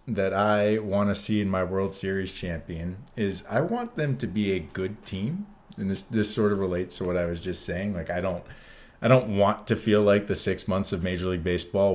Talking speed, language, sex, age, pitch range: 235 wpm, English, male, 30-49, 95-120 Hz